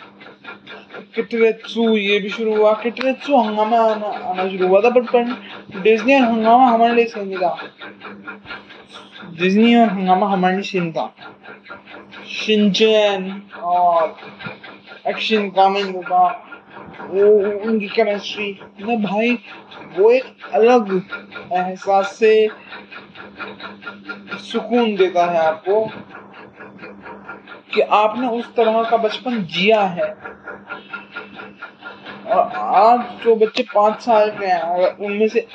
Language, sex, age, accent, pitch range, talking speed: English, male, 20-39, Indian, 190-230 Hz, 100 wpm